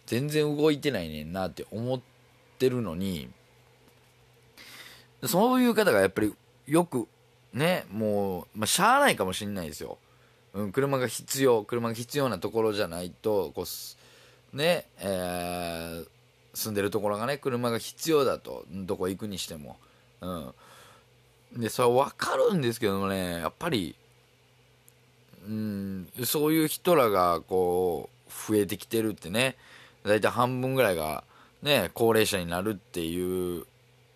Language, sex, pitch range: Japanese, male, 95-130 Hz